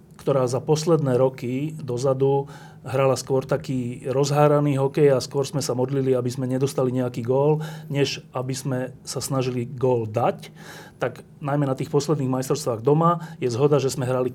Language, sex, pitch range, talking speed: Slovak, male, 125-155 Hz, 165 wpm